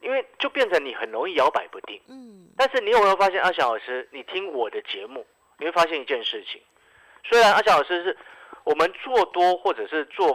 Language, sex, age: Chinese, male, 50-69